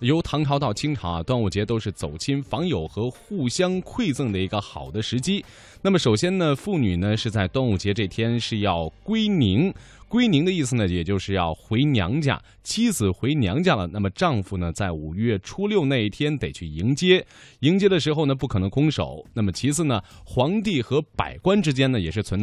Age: 20-39